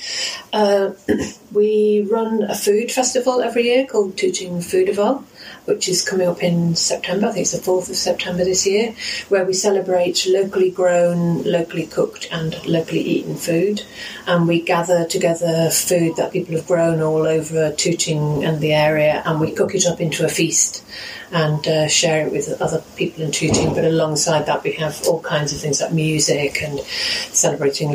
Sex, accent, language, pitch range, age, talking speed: female, British, English, 160-190 Hz, 40-59, 175 wpm